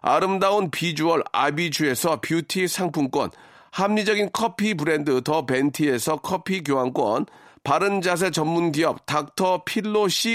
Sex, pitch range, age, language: male, 155-210 Hz, 40-59, Korean